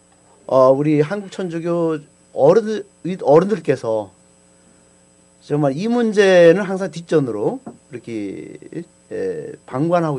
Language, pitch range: Korean, 110-170 Hz